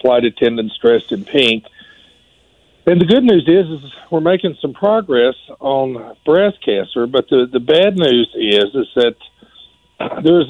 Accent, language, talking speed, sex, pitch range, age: American, English, 155 wpm, male, 115-145 Hz, 50-69